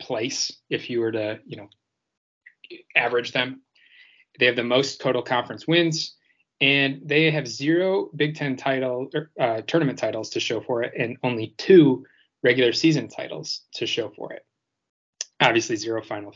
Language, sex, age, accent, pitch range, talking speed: English, male, 20-39, American, 115-140 Hz, 160 wpm